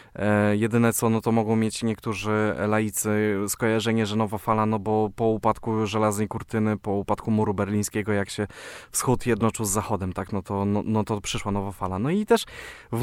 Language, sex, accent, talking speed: Polish, male, native, 195 wpm